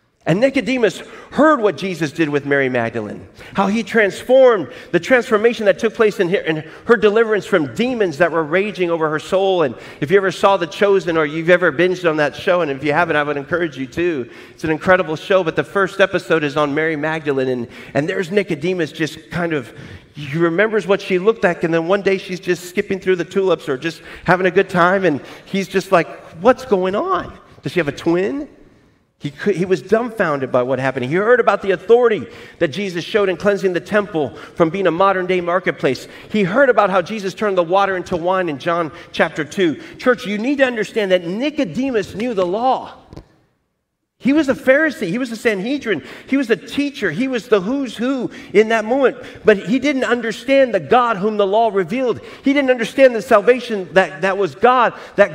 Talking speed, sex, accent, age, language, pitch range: 210 wpm, male, American, 40-59, English, 170-225 Hz